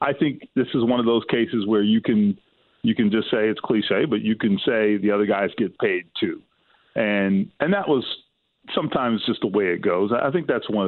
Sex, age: male, 40-59